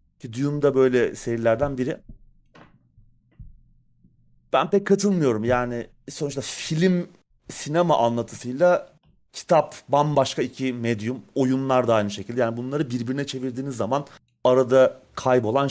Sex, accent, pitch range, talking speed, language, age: male, native, 115-155 Hz, 105 wpm, Turkish, 30-49